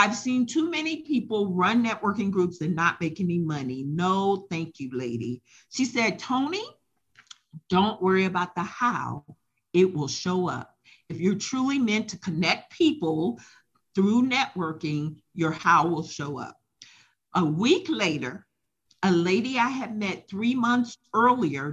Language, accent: English, American